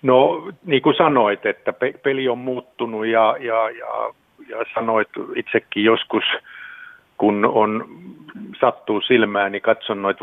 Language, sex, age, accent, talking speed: Finnish, male, 50-69, native, 135 wpm